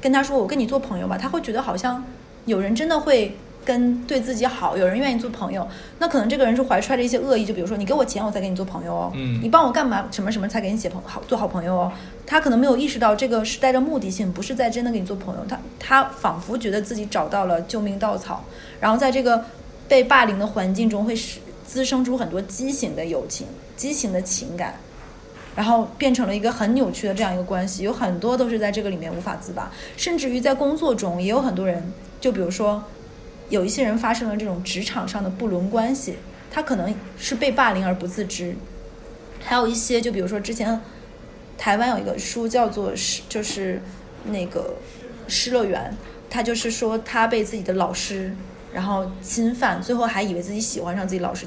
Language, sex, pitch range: Chinese, female, 195-255 Hz